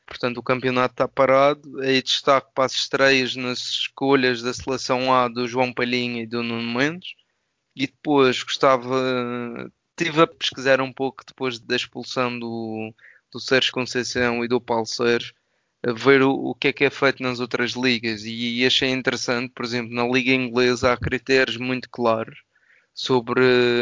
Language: Portuguese